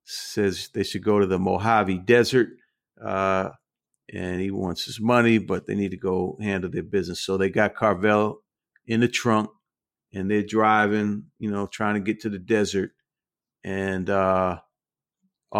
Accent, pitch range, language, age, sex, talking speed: American, 95-110 Hz, English, 50-69, male, 160 wpm